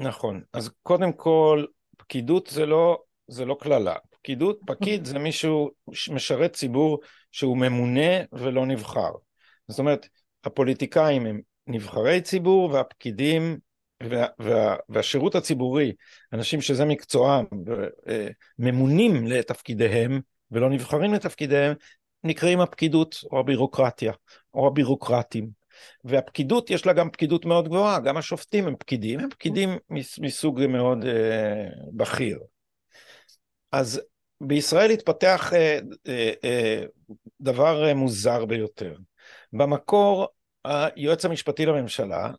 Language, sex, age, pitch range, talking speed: Hebrew, male, 50-69, 125-170 Hz, 105 wpm